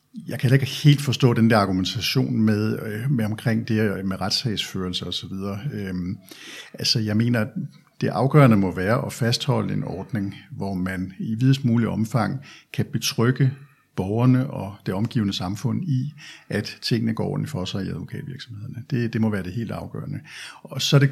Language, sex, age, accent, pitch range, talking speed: Danish, male, 60-79, native, 105-135 Hz, 175 wpm